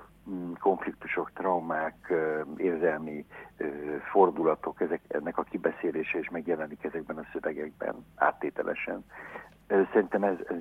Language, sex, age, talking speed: Hungarian, male, 60-79, 85 wpm